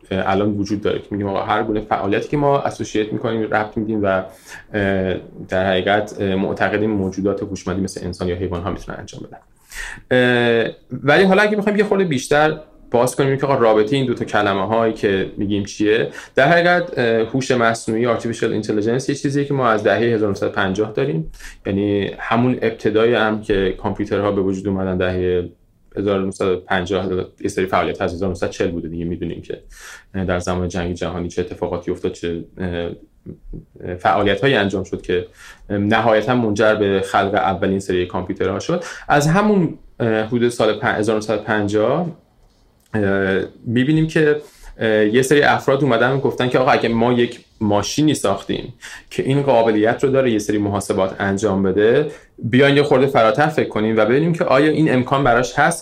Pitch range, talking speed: 100-125 Hz, 155 wpm